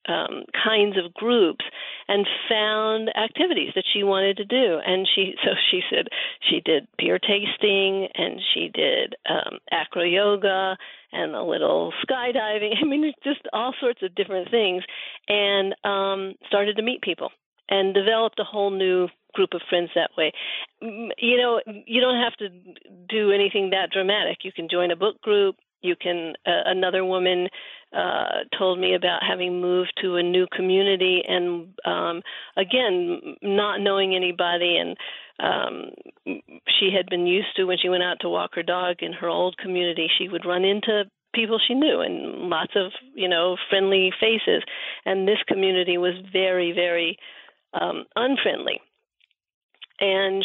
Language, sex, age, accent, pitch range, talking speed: English, female, 50-69, American, 180-220 Hz, 160 wpm